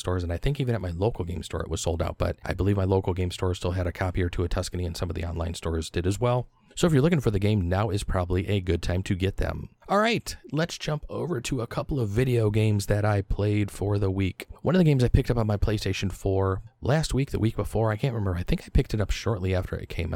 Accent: American